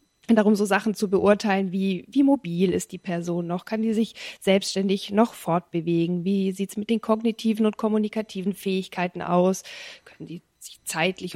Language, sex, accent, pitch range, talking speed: German, female, German, 175-215 Hz, 170 wpm